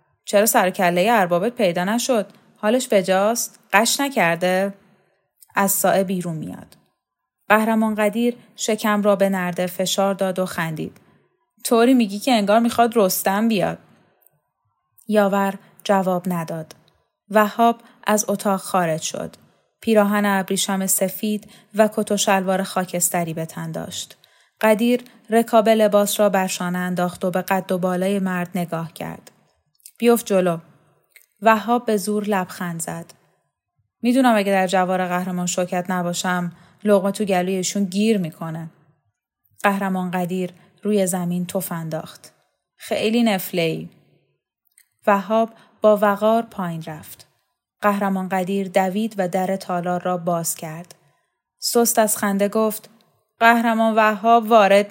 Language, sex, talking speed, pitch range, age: Persian, female, 120 wpm, 180-215 Hz, 10-29